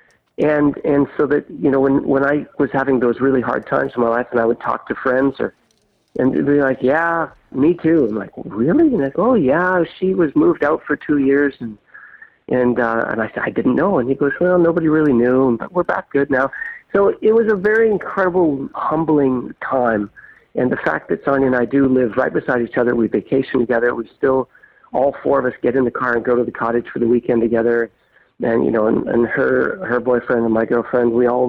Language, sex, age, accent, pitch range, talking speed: English, male, 50-69, American, 125-160 Hz, 240 wpm